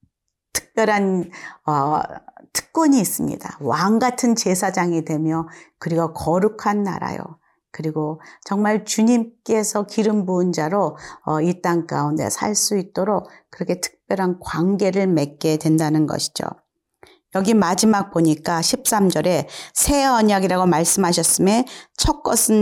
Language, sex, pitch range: Korean, female, 160-205 Hz